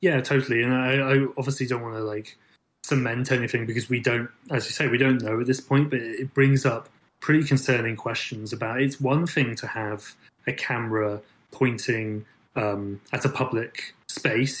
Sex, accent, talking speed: male, British, 185 wpm